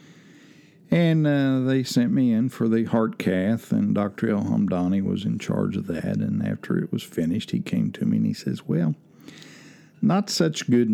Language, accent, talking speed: English, American, 185 wpm